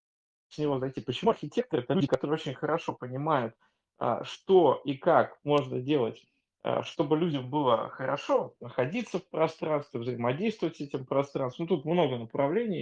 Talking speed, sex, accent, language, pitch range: 145 wpm, male, native, Russian, 140-175 Hz